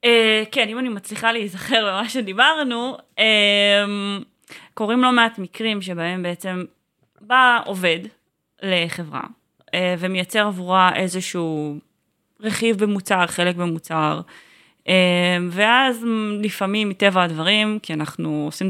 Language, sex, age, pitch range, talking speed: Hebrew, female, 20-39, 170-210 Hz, 110 wpm